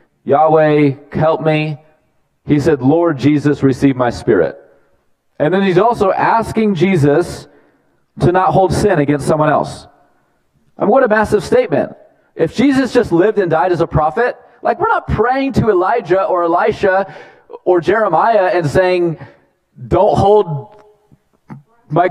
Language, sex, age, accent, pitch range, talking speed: English, male, 30-49, American, 140-190 Hz, 140 wpm